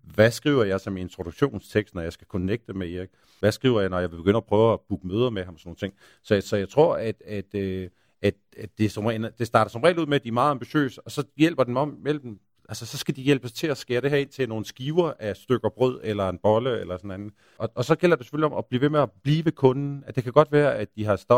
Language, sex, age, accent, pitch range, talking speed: Danish, male, 50-69, native, 100-135 Hz, 280 wpm